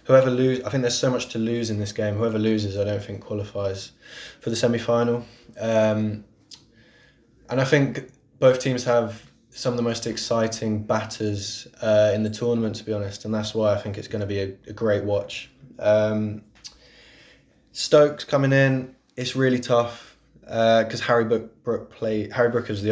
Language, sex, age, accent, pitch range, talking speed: English, male, 20-39, British, 105-120 Hz, 175 wpm